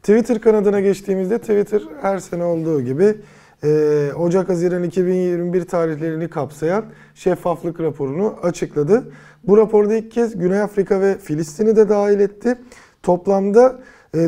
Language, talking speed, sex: Turkish, 120 wpm, male